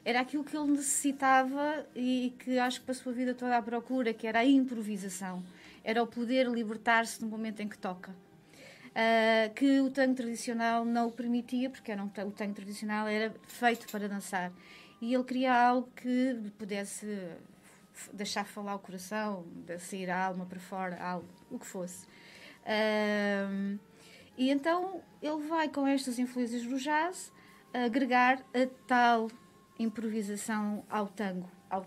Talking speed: 155 wpm